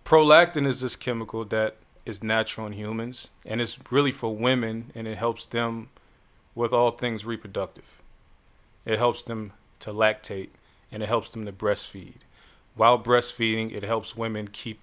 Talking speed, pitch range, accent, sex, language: 160 wpm, 110-130 Hz, American, male, English